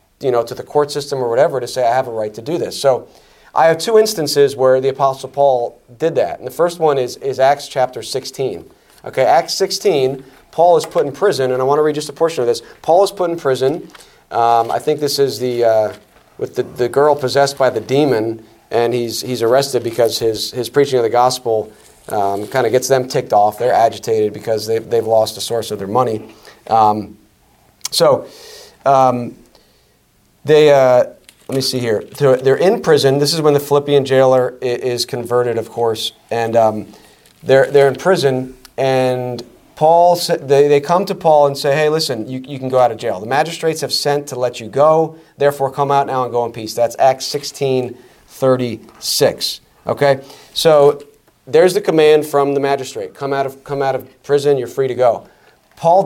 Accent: American